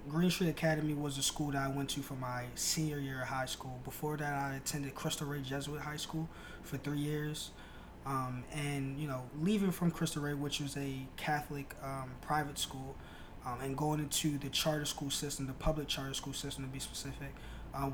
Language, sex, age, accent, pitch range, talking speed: English, male, 20-39, American, 125-145 Hz, 205 wpm